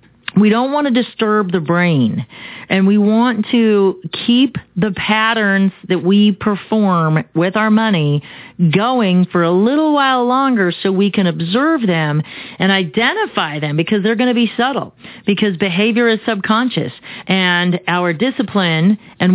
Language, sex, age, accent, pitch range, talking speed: English, female, 40-59, American, 170-220 Hz, 150 wpm